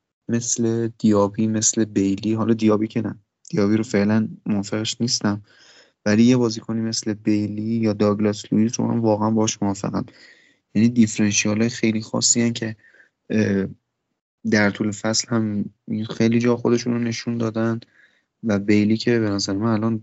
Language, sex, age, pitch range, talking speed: Persian, male, 30-49, 105-120 Hz, 145 wpm